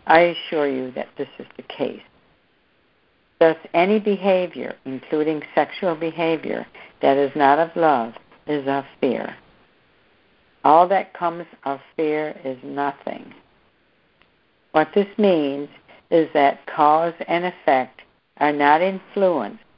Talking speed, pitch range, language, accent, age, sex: 120 wpm, 140-170 Hz, English, American, 60-79, female